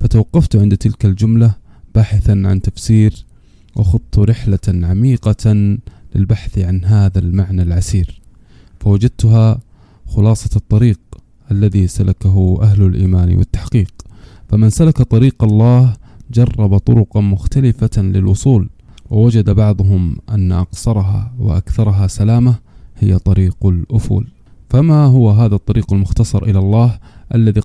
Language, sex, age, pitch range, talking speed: Arabic, male, 20-39, 95-115 Hz, 105 wpm